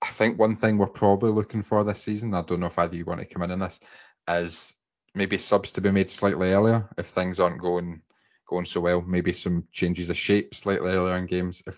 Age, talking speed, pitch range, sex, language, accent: 20-39, 240 wpm, 85-100 Hz, male, English, British